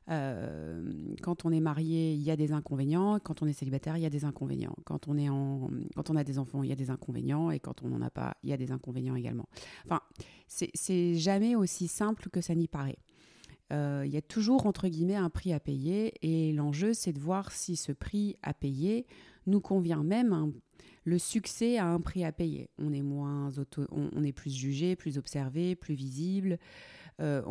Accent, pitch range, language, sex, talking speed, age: French, 140-175 Hz, French, female, 225 wpm, 30-49